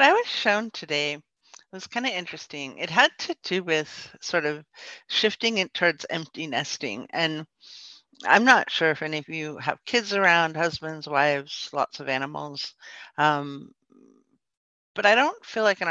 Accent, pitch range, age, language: American, 145-210 Hz, 50-69, English